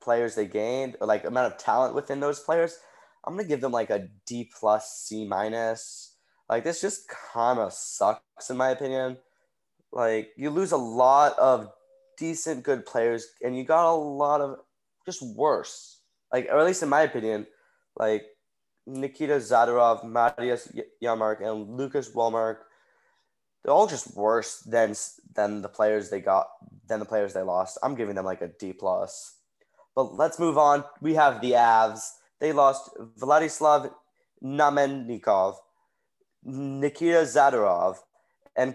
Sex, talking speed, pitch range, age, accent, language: male, 155 wpm, 110-150 Hz, 10-29, American, English